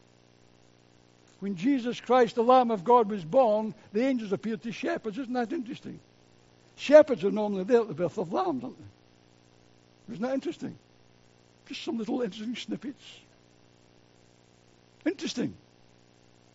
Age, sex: 60-79, male